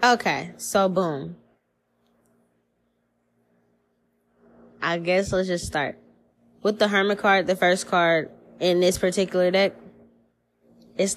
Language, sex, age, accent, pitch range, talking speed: English, female, 10-29, American, 165-195 Hz, 105 wpm